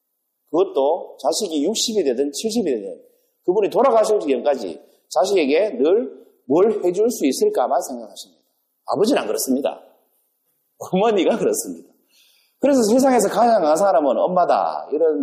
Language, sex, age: Korean, male, 40-59